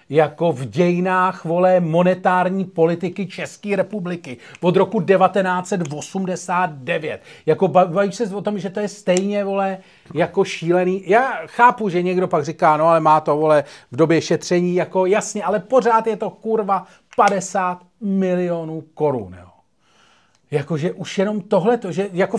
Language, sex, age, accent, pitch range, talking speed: Czech, male, 40-59, native, 160-210 Hz, 140 wpm